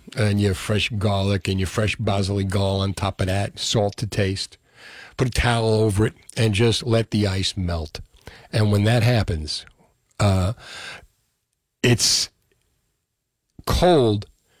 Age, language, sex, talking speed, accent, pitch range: 50-69, English, male, 140 wpm, American, 100-135 Hz